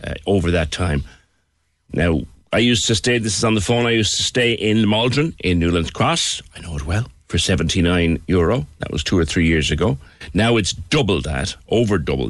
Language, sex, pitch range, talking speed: English, male, 85-120 Hz, 210 wpm